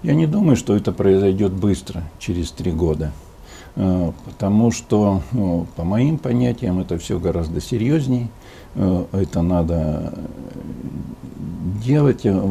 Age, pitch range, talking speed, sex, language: 60-79, 95-125 Hz, 110 wpm, male, Russian